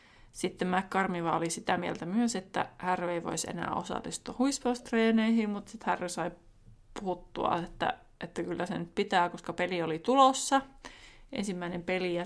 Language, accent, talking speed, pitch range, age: Finnish, native, 140 wpm, 180-235 Hz, 20-39